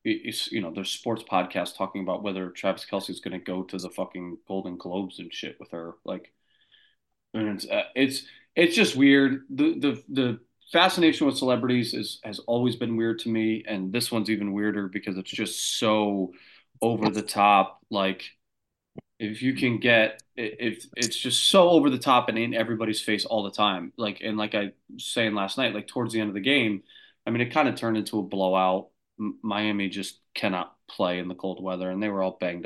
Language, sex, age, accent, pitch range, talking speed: English, male, 20-39, American, 95-115 Hz, 205 wpm